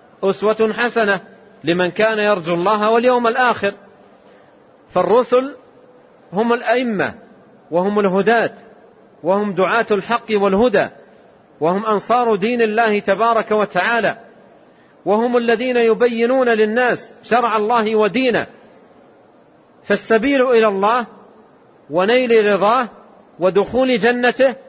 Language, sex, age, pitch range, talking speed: Arabic, male, 40-59, 200-240 Hz, 90 wpm